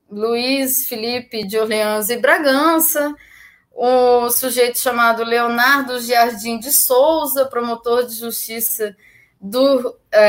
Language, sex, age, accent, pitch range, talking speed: Portuguese, female, 10-29, Brazilian, 230-295 Hz, 110 wpm